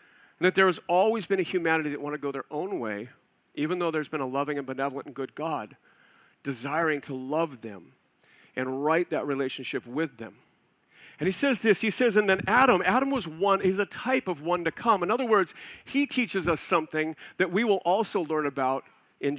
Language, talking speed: English, 210 wpm